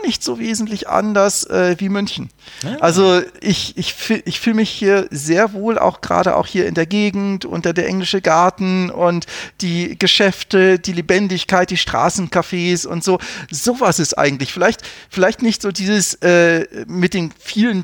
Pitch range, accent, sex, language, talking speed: 165-200 Hz, German, male, German, 160 wpm